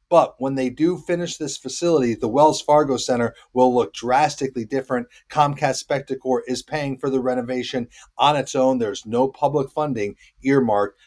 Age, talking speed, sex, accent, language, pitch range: 40-59, 165 wpm, male, American, English, 130-160 Hz